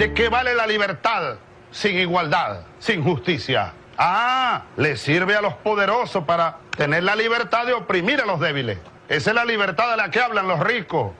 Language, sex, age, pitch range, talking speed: Spanish, male, 40-59, 150-210 Hz, 180 wpm